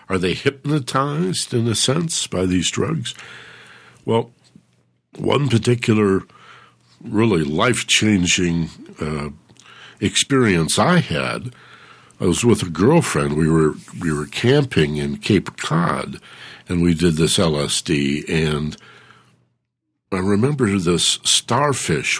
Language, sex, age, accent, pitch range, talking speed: English, male, 60-79, American, 80-120 Hz, 110 wpm